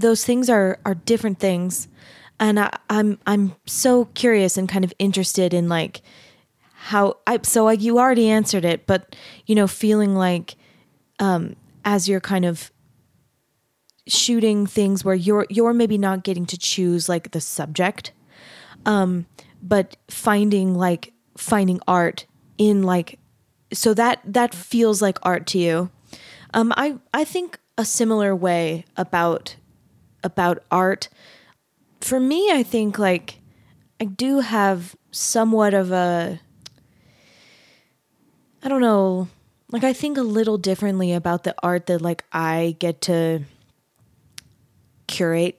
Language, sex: English, female